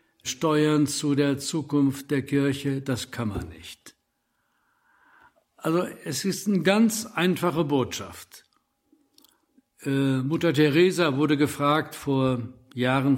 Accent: German